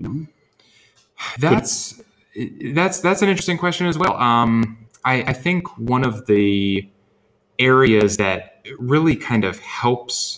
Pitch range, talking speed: 95-120 Hz, 120 wpm